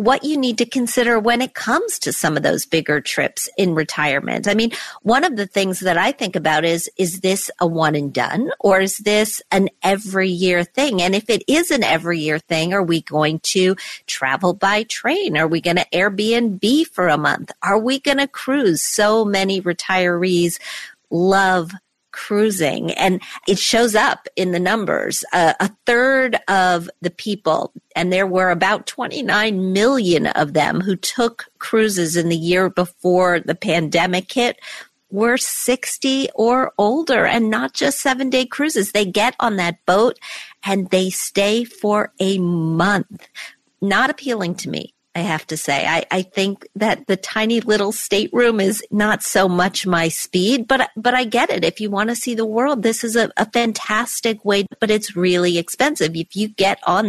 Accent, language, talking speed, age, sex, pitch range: American, English, 180 wpm, 50-69, female, 180-225 Hz